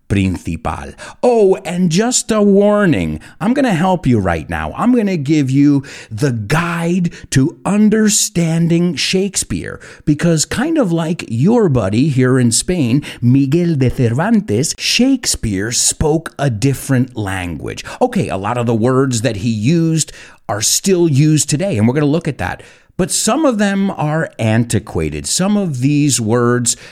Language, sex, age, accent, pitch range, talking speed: English, male, 50-69, American, 115-170 Hz, 150 wpm